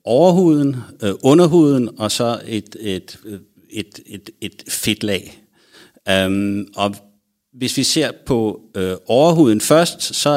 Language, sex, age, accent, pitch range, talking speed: Danish, male, 60-79, native, 100-135 Hz, 110 wpm